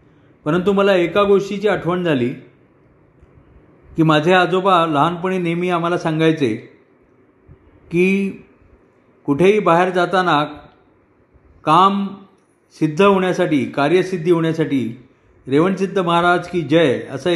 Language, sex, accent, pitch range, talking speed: Marathi, male, native, 155-180 Hz, 95 wpm